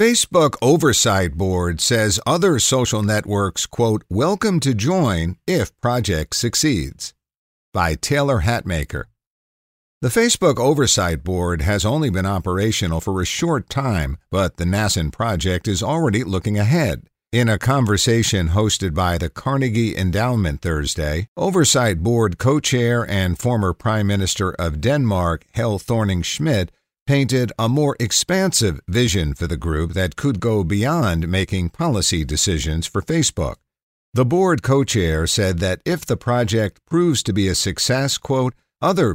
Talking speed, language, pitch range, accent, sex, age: 135 wpm, English, 85-120 Hz, American, male, 50-69